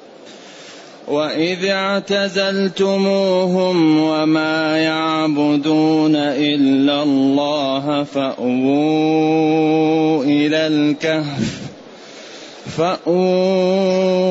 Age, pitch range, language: 30-49, 145-160 Hz, Arabic